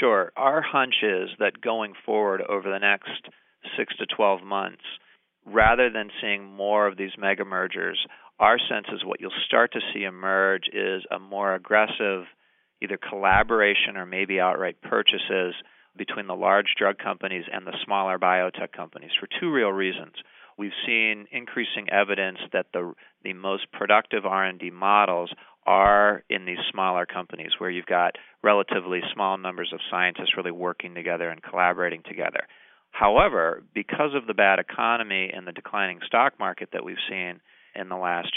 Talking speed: 160 wpm